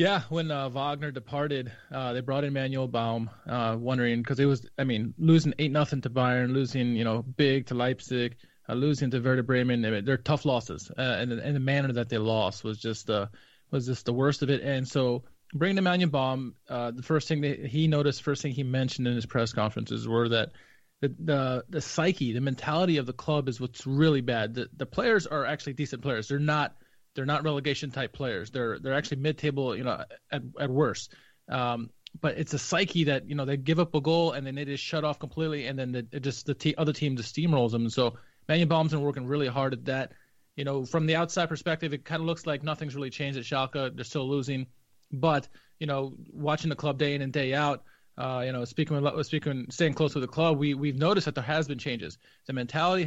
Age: 20-39